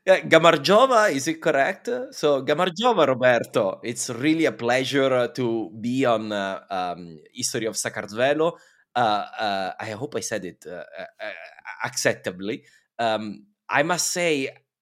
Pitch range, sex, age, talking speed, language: 105-175 Hz, male, 30-49, 135 wpm, Italian